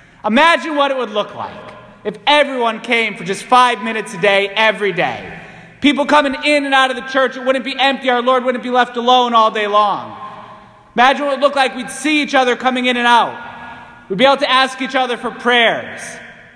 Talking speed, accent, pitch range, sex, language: 220 wpm, American, 235-285 Hz, male, English